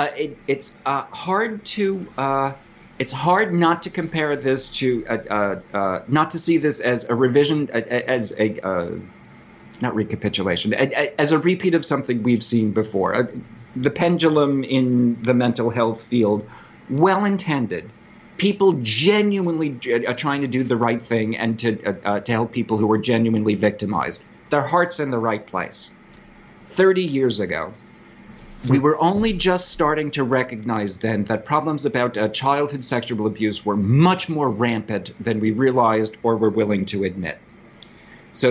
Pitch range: 115-150 Hz